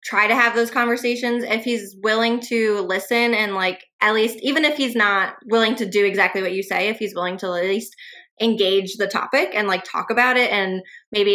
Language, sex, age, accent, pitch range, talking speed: English, female, 20-39, American, 190-225 Hz, 215 wpm